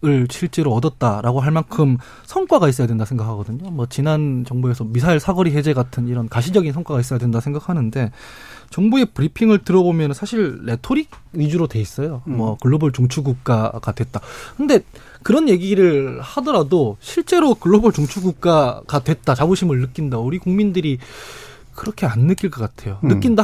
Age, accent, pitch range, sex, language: 20-39, native, 125-195 Hz, male, Korean